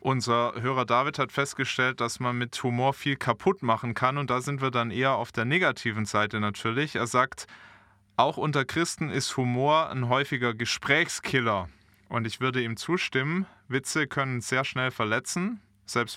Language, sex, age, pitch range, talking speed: German, male, 20-39, 120-150 Hz, 165 wpm